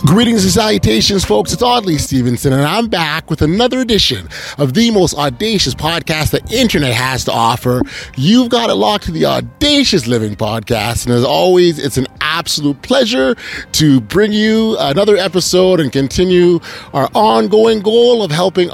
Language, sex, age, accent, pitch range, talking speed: English, male, 30-49, American, 145-195 Hz, 165 wpm